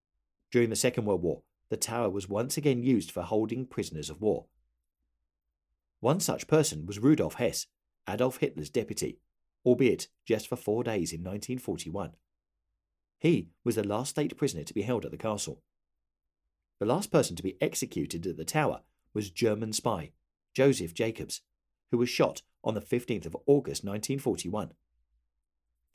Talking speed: 155 wpm